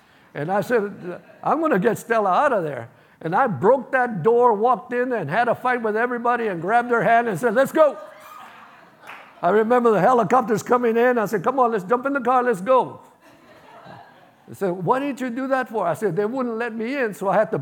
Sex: male